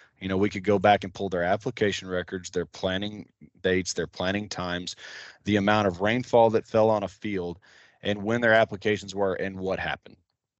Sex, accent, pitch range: male, American, 95-110 Hz